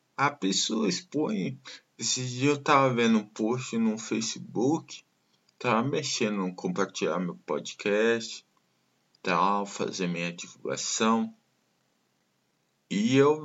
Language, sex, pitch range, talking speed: Portuguese, male, 105-145 Hz, 105 wpm